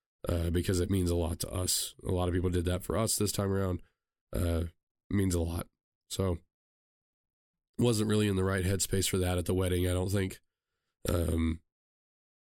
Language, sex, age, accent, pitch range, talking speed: English, male, 20-39, American, 85-100 Hz, 190 wpm